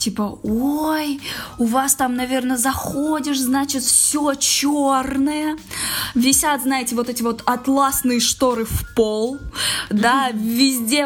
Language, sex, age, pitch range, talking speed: Russian, female, 20-39, 220-270 Hz, 115 wpm